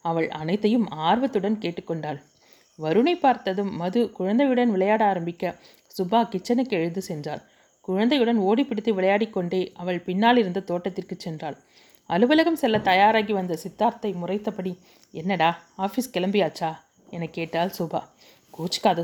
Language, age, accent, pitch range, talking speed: Tamil, 30-49, native, 170-220 Hz, 115 wpm